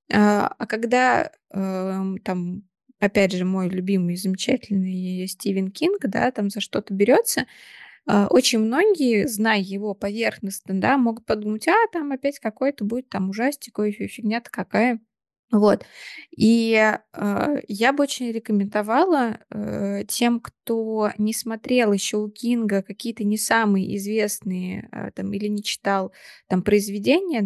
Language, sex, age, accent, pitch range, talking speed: Russian, female, 20-39, native, 195-230 Hz, 120 wpm